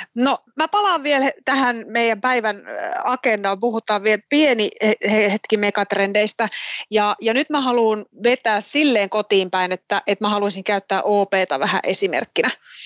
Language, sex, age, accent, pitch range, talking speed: Finnish, female, 20-39, native, 200-255 Hz, 140 wpm